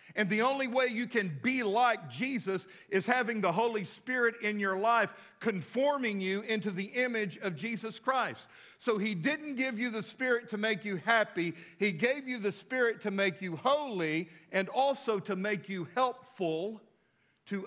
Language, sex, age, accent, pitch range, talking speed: English, male, 50-69, American, 185-235 Hz, 175 wpm